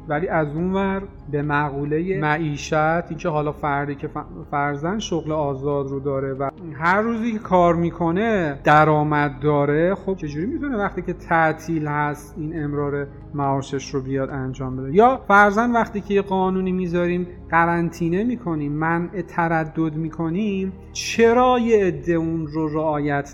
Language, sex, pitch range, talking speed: Persian, male, 150-190 Hz, 140 wpm